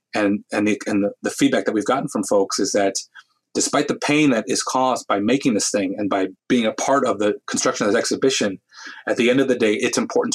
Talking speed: 245 wpm